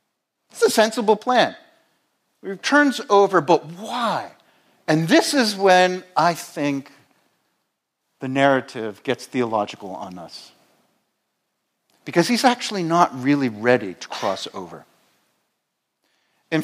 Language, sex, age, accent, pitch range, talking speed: English, male, 50-69, American, 150-205 Hz, 110 wpm